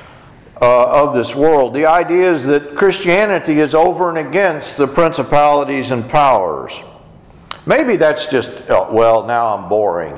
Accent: American